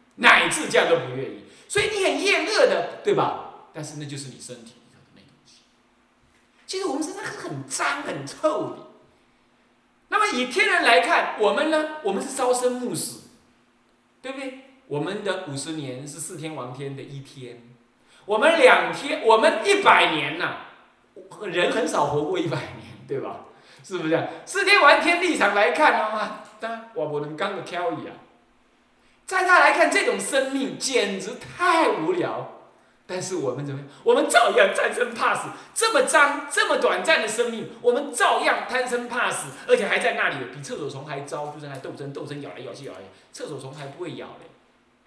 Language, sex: Chinese, male